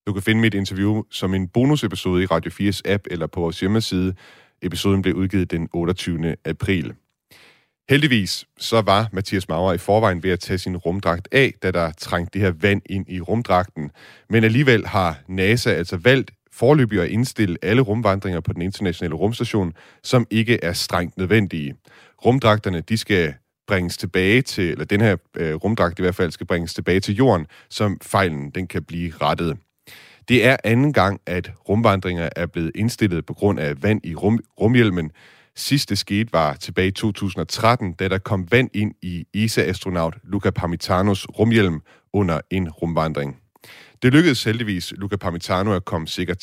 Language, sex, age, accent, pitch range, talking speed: Danish, male, 30-49, native, 85-110 Hz, 170 wpm